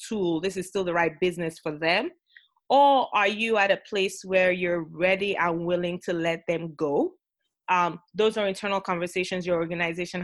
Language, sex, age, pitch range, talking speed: English, female, 20-39, 170-200 Hz, 180 wpm